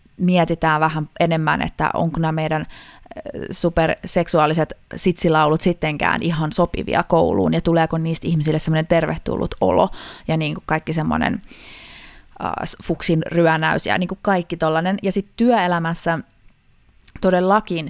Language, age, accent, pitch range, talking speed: Finnish, 20-39, native, 160-190 Hz, 120 wpm